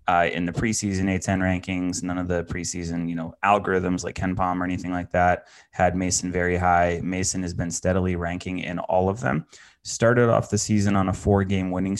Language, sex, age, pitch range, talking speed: English, male, 20-39, 85-95 Hz, 205 wpm